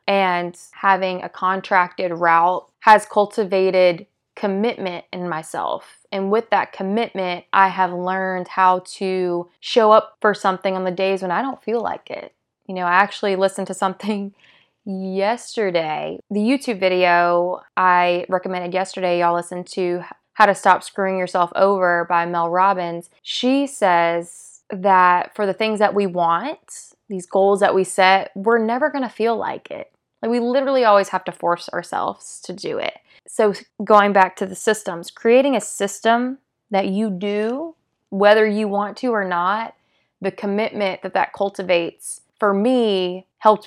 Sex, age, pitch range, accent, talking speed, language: female, 20-39, 180-205 Hz, American, 160 wpm, English